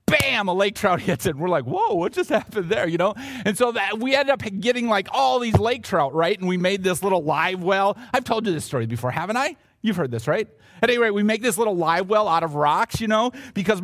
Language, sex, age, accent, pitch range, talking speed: English, male, 40-59, American, 155-220 Hz, 275 wpm